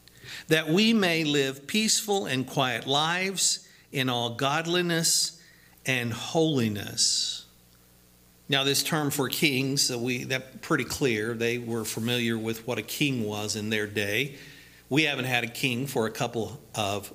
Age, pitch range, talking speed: 50-69, 110-155 Hz, 145 wpm